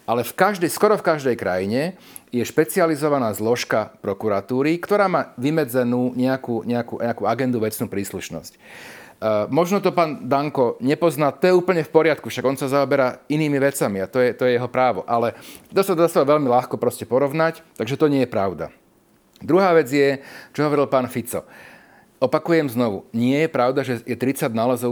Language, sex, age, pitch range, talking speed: Slovak, male, 40-59, 115-150 Hz, 175 wpm